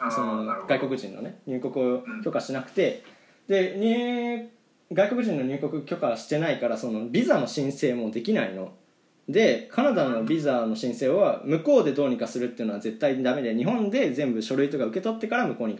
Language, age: Japanese, 20-39